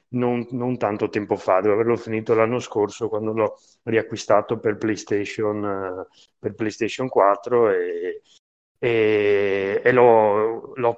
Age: 30-49